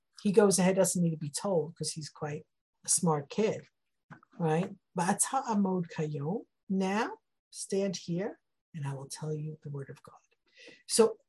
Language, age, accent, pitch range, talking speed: English, 50-69, American, 170-225 Hz, 150 wpm